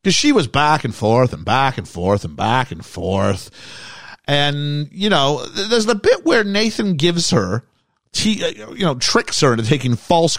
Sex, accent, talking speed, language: male, American, 190 wpm, English